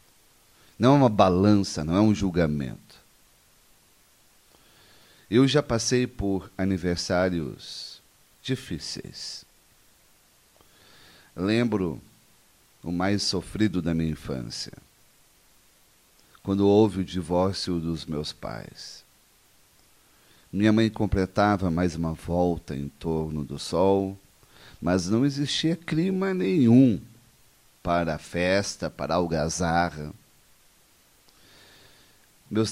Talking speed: 90 wpm